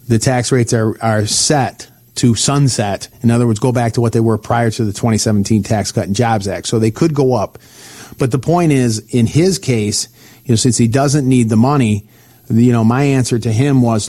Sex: male